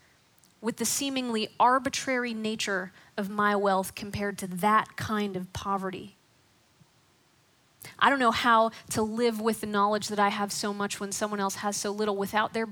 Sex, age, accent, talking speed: female, 20-39, American, 170 wpm